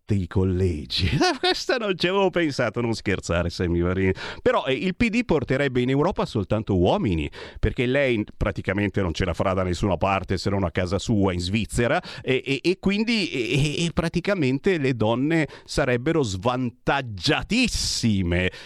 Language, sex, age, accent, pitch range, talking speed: Italian, male, 40-59, native, 100-165 Hz, 140 wpm